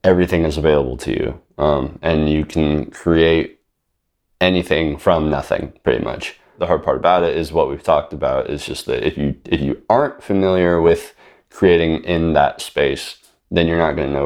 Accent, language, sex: American, English, male